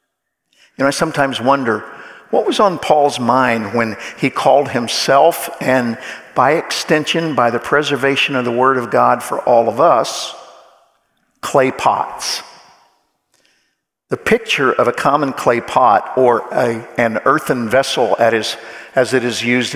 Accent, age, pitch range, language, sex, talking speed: American, 50-69, 120-155 Hz, English, male, 140 wpm